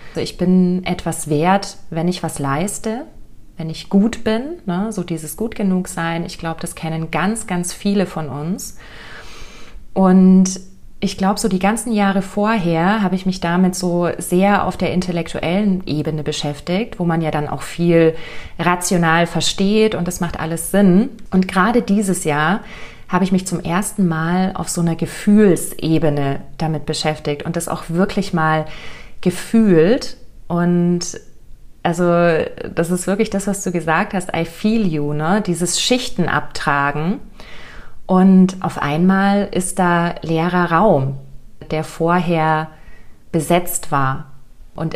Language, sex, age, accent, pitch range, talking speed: German, female, 30-49, German, 160-195 Hz, 150 wpm